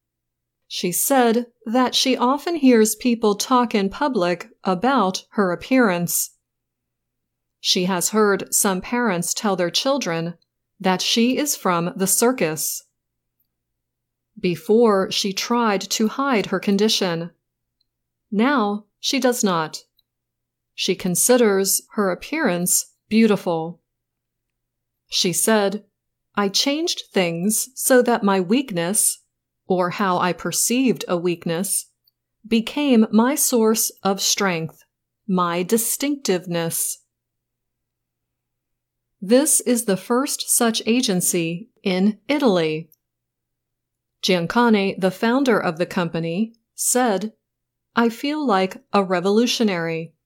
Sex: female